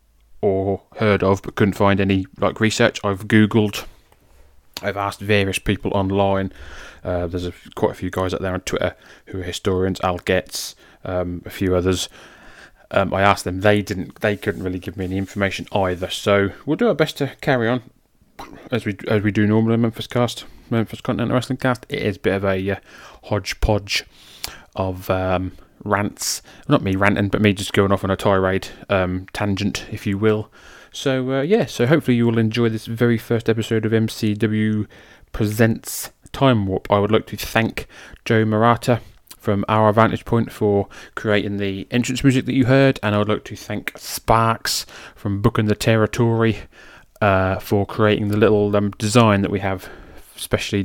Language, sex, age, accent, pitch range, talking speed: English, male, 20-39, British, 95-115 Hz, 185 wpm